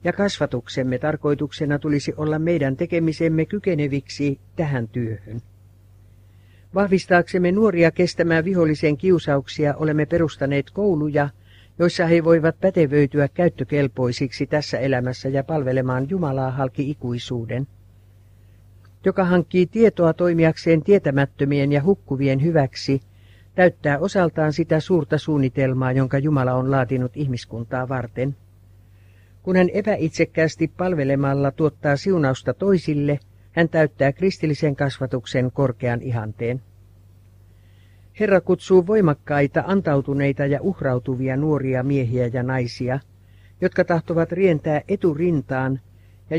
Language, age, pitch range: Finnish, 60-79, 125-165 Hz